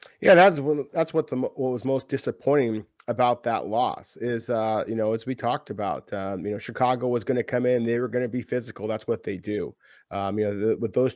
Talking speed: 240 wpm